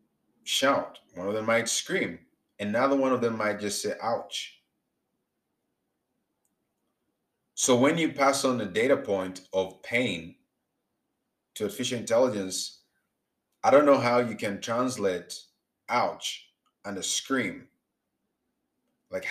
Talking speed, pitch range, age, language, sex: 120 wpm, 100-135 Hz, 30-49, English, male